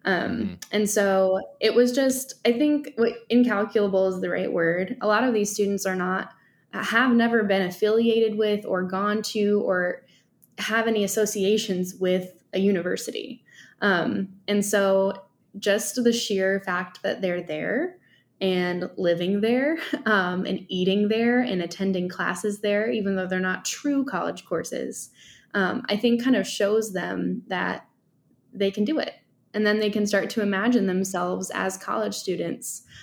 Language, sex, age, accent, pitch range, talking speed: English, female, 10-29, American, 190-230 Hz, 155 wpm